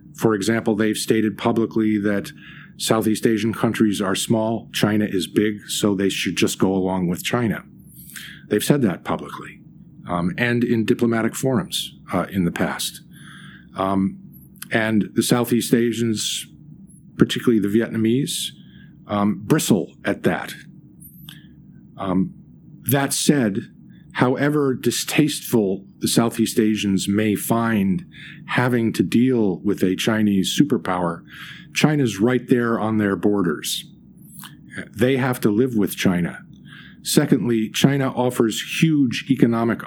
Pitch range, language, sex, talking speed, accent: 100-125 Hz, English, male, 120 wpm, American